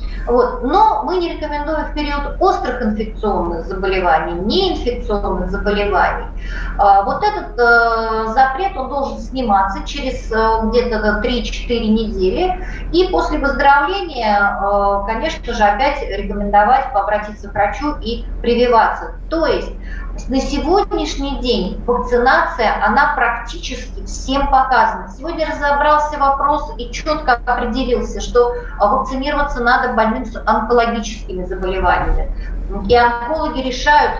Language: Russian